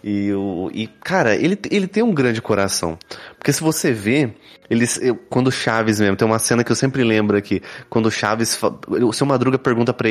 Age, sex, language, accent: 20-39, male, Portuguese, Brazilian